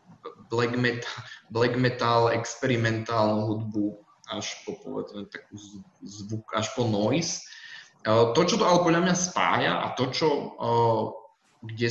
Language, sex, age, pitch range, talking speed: Slovak, male, 20-39, 105-120 Hz, 115 wpm